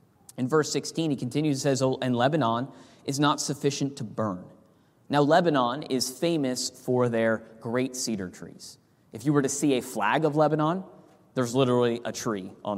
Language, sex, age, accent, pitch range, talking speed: English, male, 30-49, American, 125-155 Hz, 175 wpm